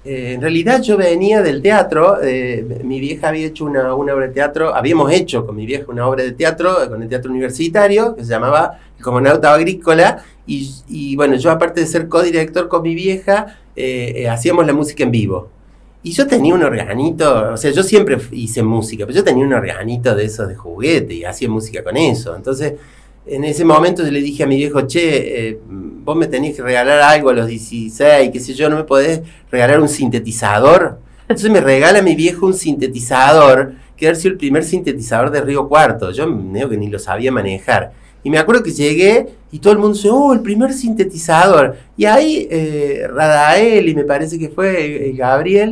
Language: Spanish